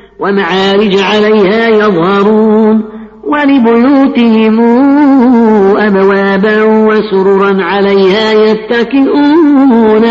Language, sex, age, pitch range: Arabic, female, 50-69, 200-230 Hz